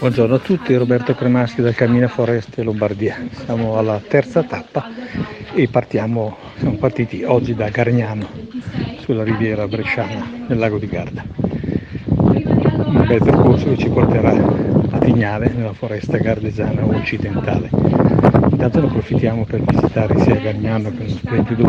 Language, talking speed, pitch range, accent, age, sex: Italian, 135 wpm, 110-130 Hz, native, 60-79, male